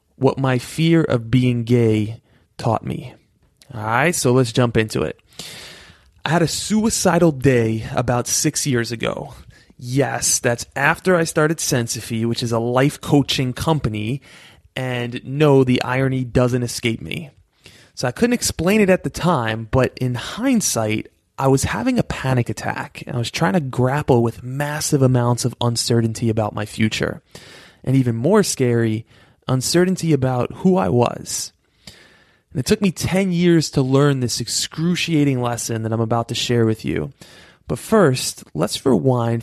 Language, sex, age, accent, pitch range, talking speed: English, male, 20-39, American, 120-155 Hz, 160 wpm